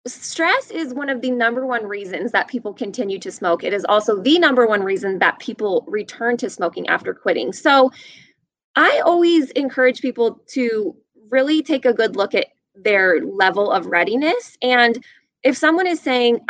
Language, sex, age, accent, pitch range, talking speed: English, female, 20-39, American, 205-265 Hz, 175 wpm